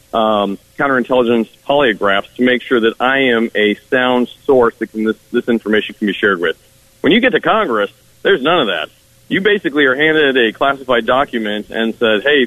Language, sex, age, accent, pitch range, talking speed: English, male, 40-59, American, 110-130 Hz, 190 wpm